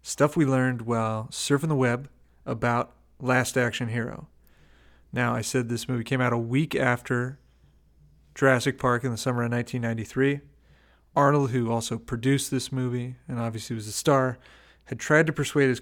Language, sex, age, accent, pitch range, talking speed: English, male, 30-49, American, 120-140 Hz, 165 wpm